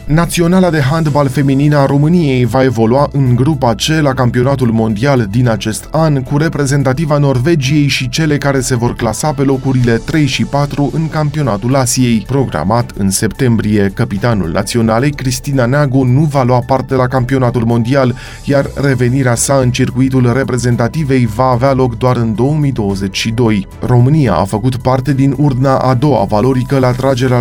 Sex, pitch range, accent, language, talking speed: male, 115-140 Hz, native, Romanian, 155 wpm